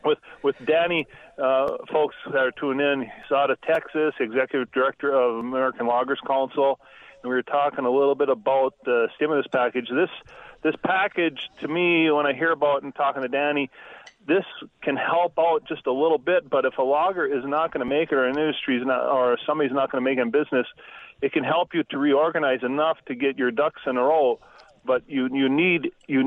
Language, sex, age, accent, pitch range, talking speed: English, male, 40-59, American, 130-170 Hz, 210 wpm